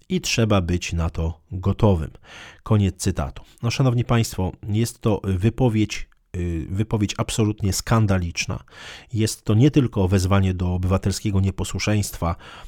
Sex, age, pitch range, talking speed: male, 40-59, 95-115 Hz, 120 wpm